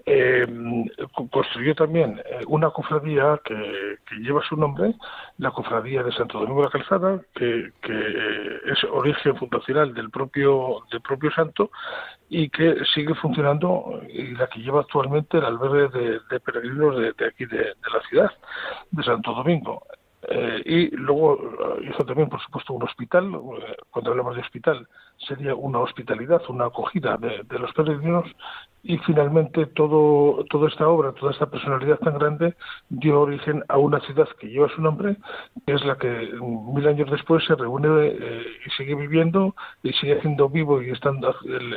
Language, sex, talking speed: Spanish, male, 165 wpm